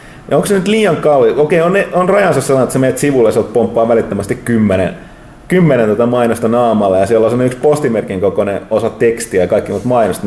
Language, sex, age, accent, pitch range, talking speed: Finnish, male, 30-49, native, 110-150 Hz, 210 wpm